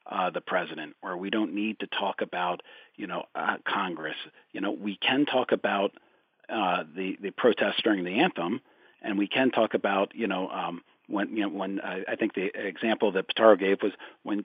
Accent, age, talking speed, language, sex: American, 50-69, 205 wpm, English, male